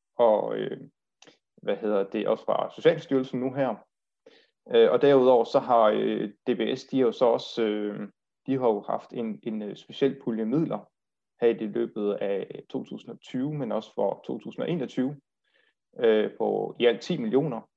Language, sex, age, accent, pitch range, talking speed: Danish, male, 30-49, native, 120-165 Hz, 145 wpm